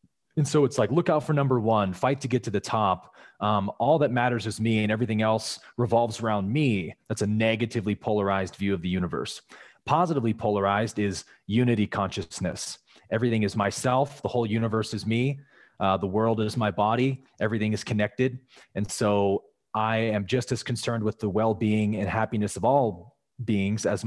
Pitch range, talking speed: 105-125 Hz, 180 wpm